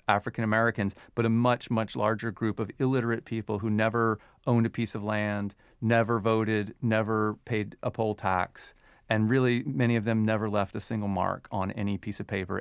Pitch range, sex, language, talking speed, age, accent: 100-115 Hz, male, English, 190 wpm, 40-59, American